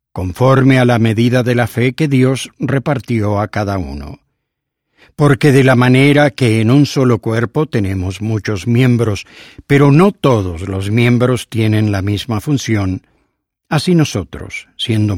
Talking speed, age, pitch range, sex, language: 145 wpm, 60-79, 105-135 Hz, male, English